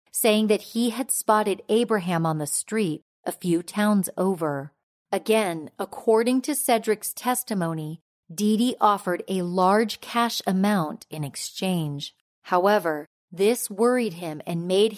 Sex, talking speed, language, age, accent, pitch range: female, 130 wpm, English, 40-59, American, 170-225 Hz